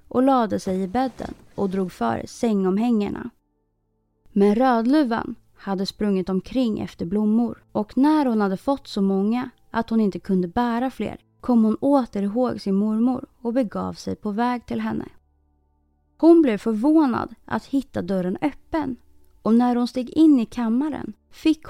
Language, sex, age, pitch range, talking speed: Swedish, female, 20-39, 195-275 Hz, 160 wpm